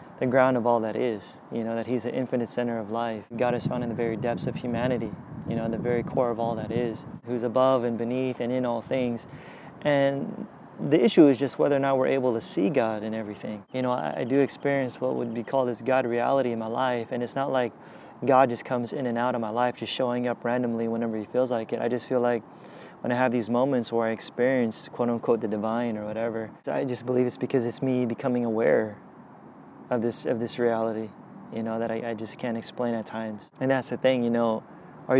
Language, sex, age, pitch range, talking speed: English, male, 20-39, 115-130 Hz, 245 wpm